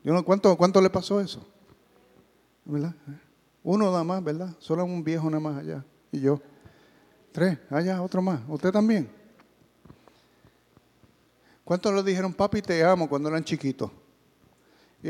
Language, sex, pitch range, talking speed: English, male, 150-205 Hz, 130 wpm